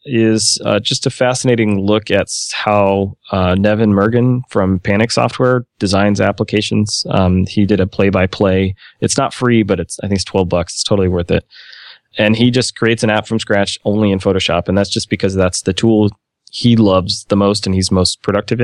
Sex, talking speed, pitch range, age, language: male, 205 wpm, 95-110 Hz, 20-39, English